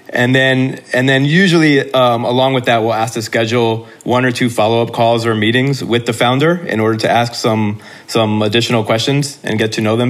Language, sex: English, male